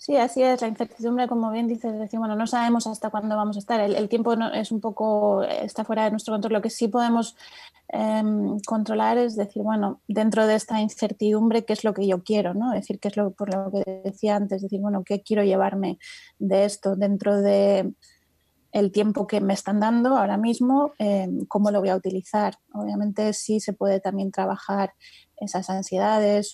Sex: female